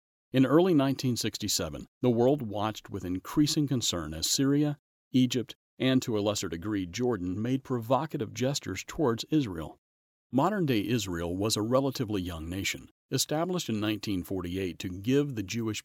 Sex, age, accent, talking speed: male, 40-59, American, 140 wpm